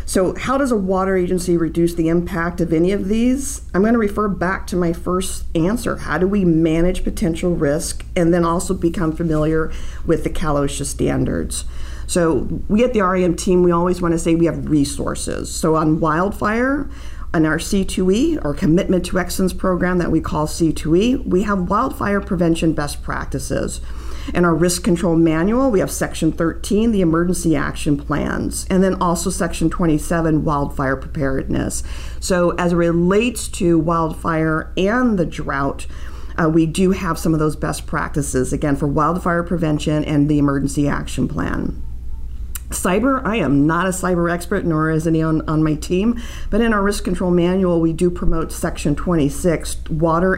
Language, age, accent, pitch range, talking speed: English, 50-69, American, 150-185 Hz, 170 wpm